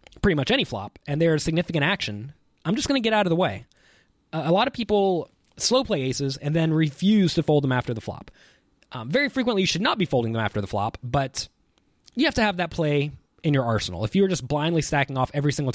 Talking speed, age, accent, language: 250 wpm, 20-39, American, English